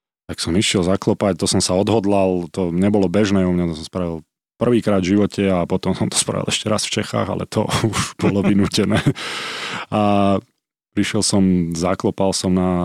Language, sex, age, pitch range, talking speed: Slovak, male, 20-39, 90-105 Hz, 180 wpm